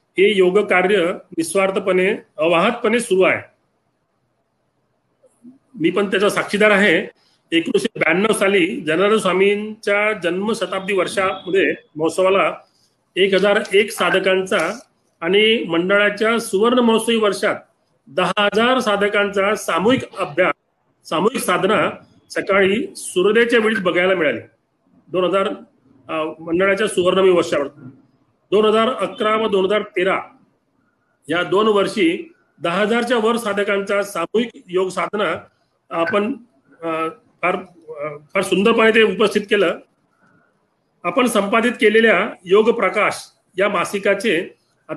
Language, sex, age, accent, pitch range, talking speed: Marathi, male, 40-59, native, 180-215 Hz, 55 wpm